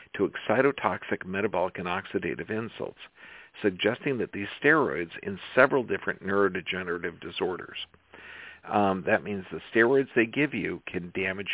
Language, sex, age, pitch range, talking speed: English, male, 50-69, 95-115 Hz, 130 wpm